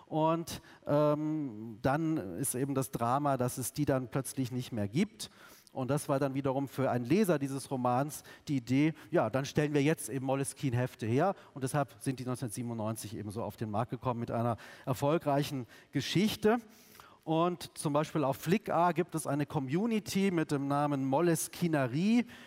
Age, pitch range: 40-59, 135-170 Hz